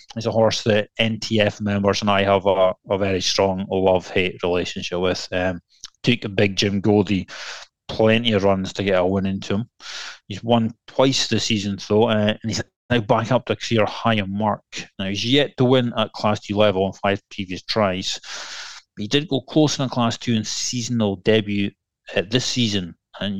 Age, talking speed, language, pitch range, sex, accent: 30-49, 190 wpm, English, 100-120 Hz, male, British